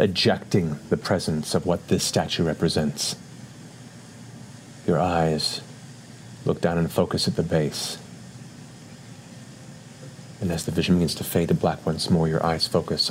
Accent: American